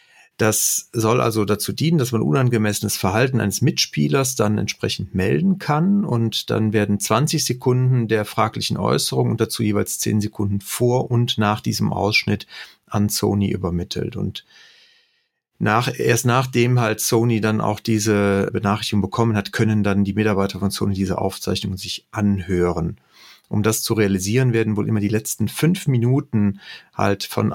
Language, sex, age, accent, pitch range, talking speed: German, male, 40-59, German, 100-120 Hz, 150 wpm